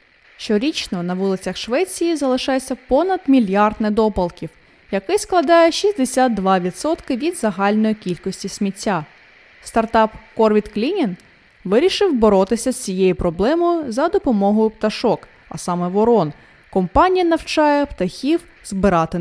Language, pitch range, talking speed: Ukrainian, 195-300 Hz, 105 wpm